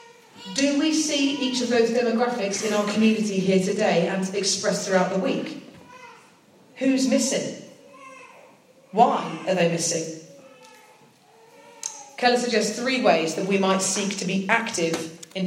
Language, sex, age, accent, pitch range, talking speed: English, female, 40-59, British, 190-255 Hz, 135 wpm